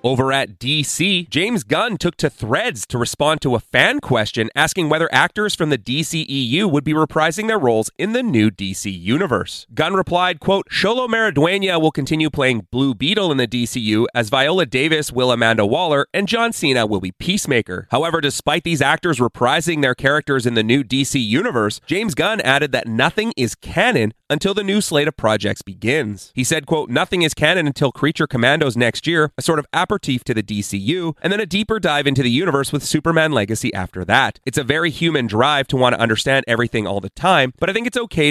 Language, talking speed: English, 200 wpm